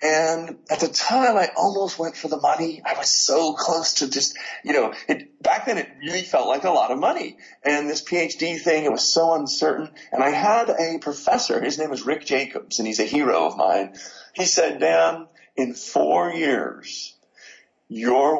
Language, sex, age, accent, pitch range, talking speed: English, male, 40-59, American, 110-160 Hz, 195 wpm